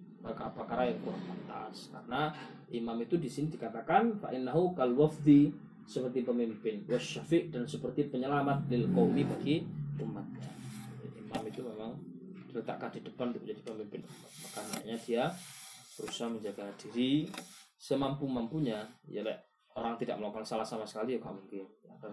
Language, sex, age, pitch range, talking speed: Malay, male, 20-39, 125-160 Hz, 140 wpm